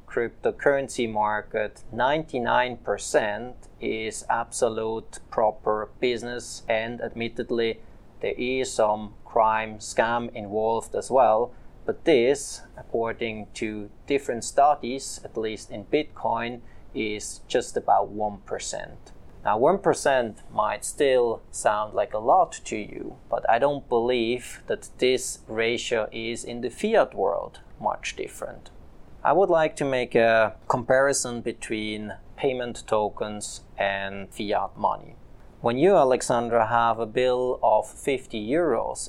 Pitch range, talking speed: 110-135 Hz, 120 wpm